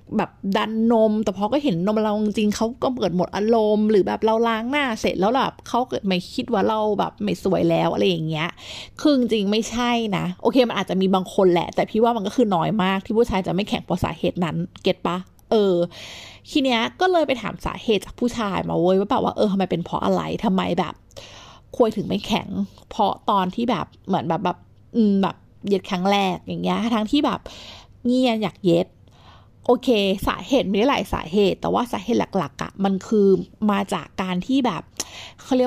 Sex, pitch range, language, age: female, 185-230 Hz, Thai, 30-49